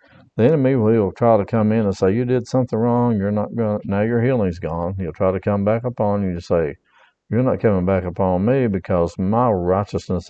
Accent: American